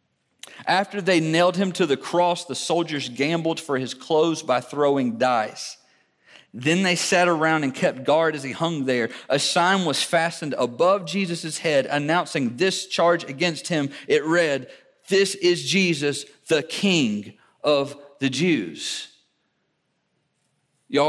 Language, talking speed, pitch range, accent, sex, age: English, 140 wpm, 145-185 Hz, American, male, 40-59